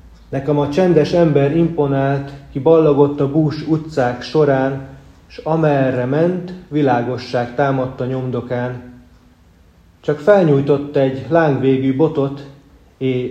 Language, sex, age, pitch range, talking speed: Hungarian, male, 30-49, 115-145 Hz, 105 wpm